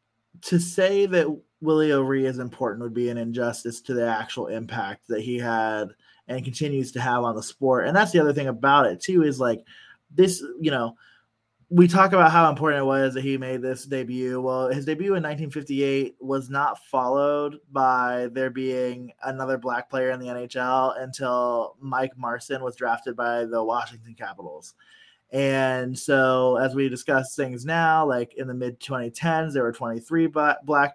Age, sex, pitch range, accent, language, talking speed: 20-39, male, 125-145 Hz, American, English, 180 wpm